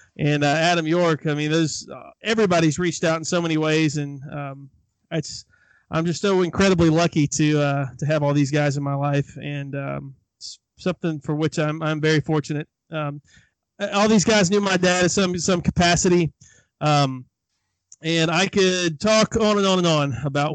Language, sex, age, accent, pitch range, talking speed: English, male, 30-49, American, 145-175 Hz, 190 wpm